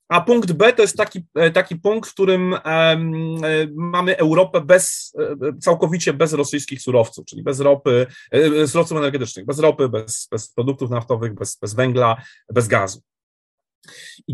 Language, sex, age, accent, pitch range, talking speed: Polish, male, 30-49, native, 145-185 Hz, 140 wpm